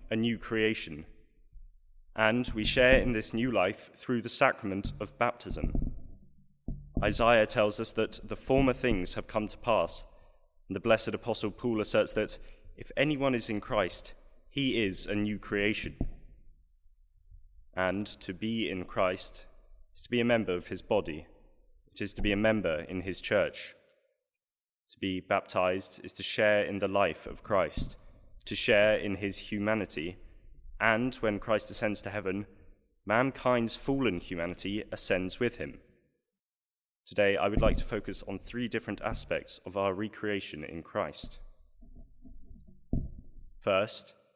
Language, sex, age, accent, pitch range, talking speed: English, male, 20-39, British, 90-110 Hz, 145 wpm